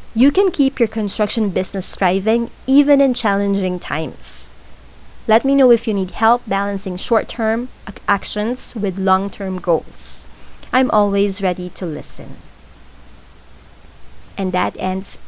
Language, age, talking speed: English, 20-39, 125 wpm